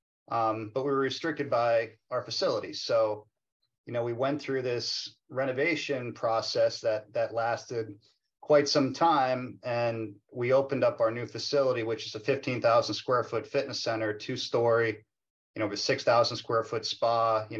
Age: 40-59